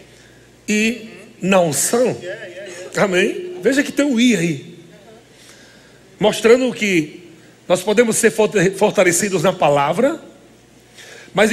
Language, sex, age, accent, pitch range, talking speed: Portuguese, male, 60-79, Brazilian, 175-235 Hz, 100 wpm